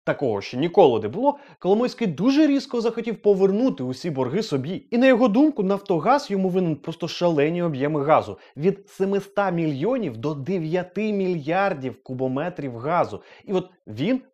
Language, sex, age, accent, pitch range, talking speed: Ukrainian, male, 30-49, native, 155-225 Hz, 145 wpm